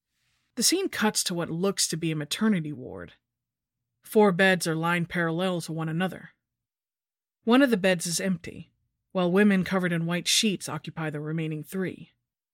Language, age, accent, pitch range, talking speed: English, 30-49, American, 160-215 Hz, 170 wpm